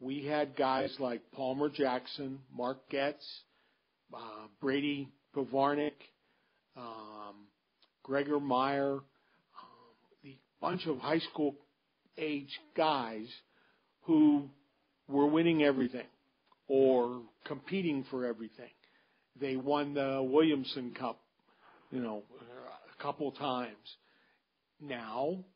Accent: American